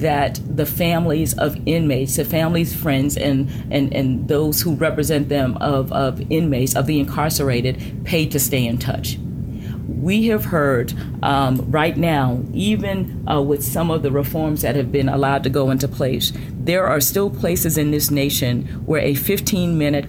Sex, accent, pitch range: female, American, 130-150 Hz